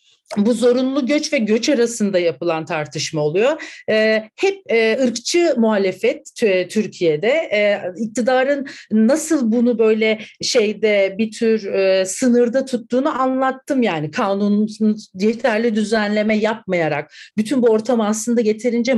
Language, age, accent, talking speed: Turkish, 50-69, native, 110 wpm